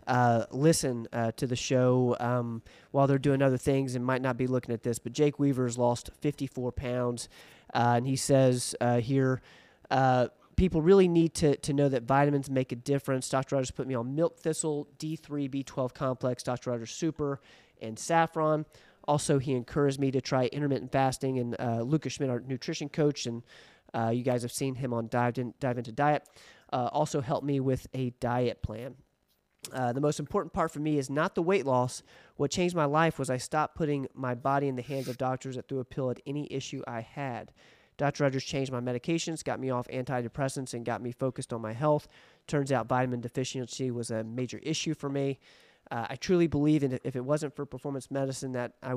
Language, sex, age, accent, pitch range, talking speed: English, male, 30-49, American, 125-145 Hz, 205 wpm